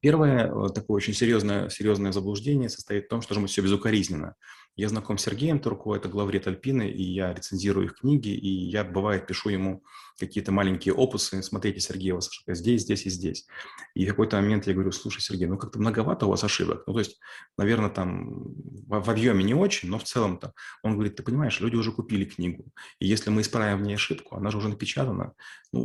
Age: 30-49